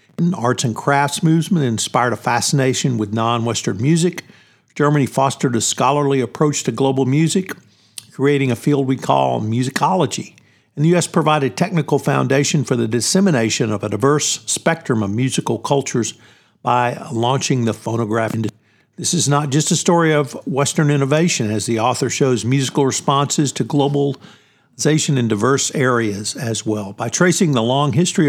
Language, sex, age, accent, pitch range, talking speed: English, male, 50-69, American, 120-145 Hz, 150 wpm